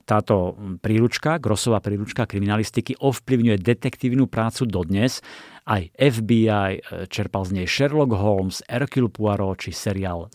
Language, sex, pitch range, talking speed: Slovak, male, 100-125 Hz, 115 wpm